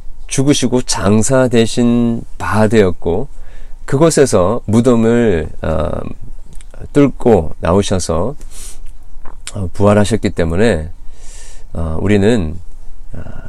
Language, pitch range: Korean, 85-110 Hz